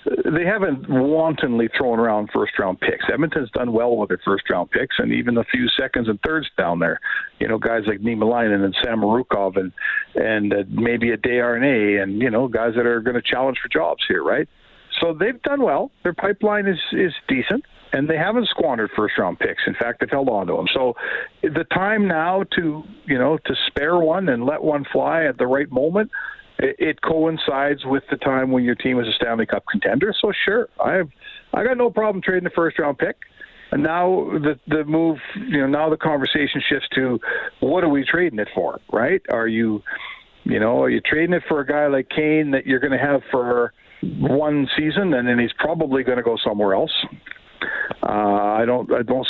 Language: English